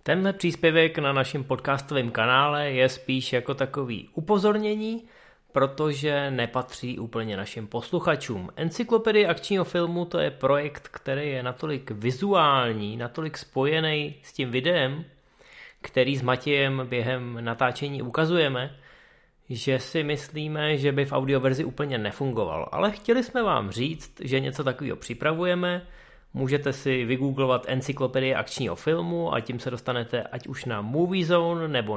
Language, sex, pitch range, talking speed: Czech, male, 125-160 Hz, 130 wpm